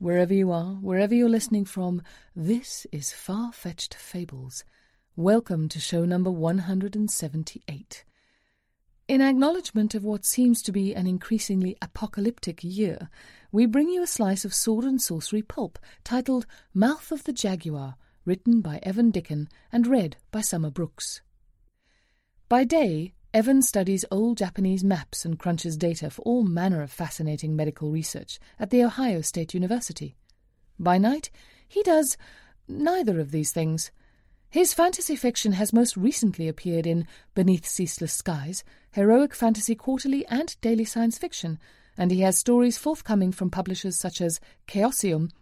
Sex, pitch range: female, 165-235 Hz